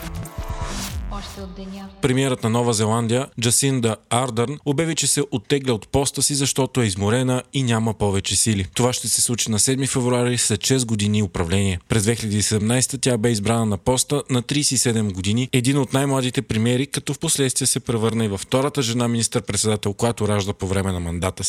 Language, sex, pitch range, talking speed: Bulgarian, male, 110-130 Hz, 170 wpm